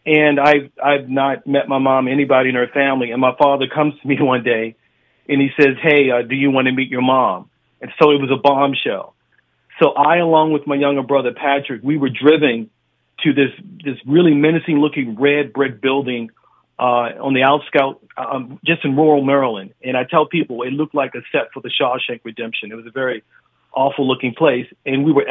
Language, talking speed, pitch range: English, 210 wpm, 130-150 Hz